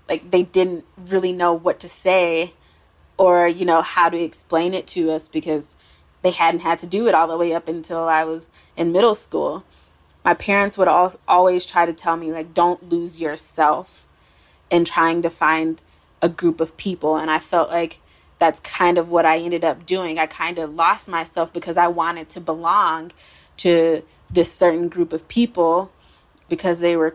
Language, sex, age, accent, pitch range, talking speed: English, female, 20-39, American, 165-185 Hz, 190 wpm